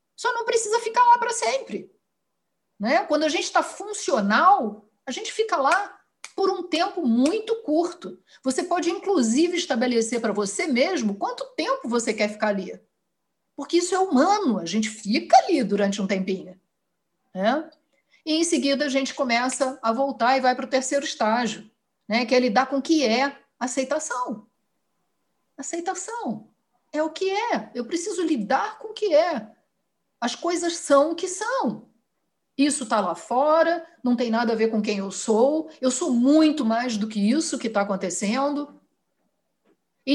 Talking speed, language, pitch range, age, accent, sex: 165 wpm, Portuguese, 235-330 Hz, 50-69, Brazilian, female